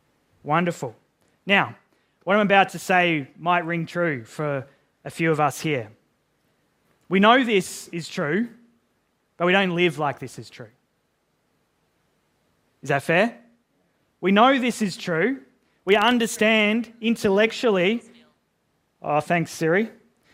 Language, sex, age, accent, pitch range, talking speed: English, male, 20-39, Australian, 170-235 Hz, 125 wpm